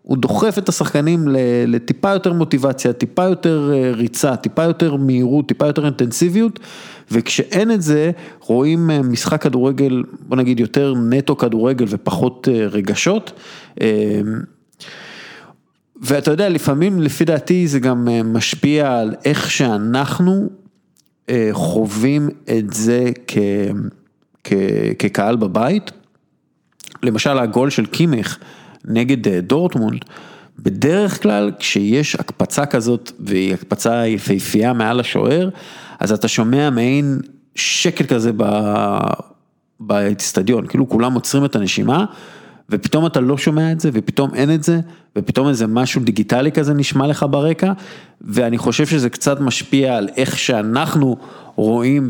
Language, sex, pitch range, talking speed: Hebrew, male, 115-160 Hz, 115 wpm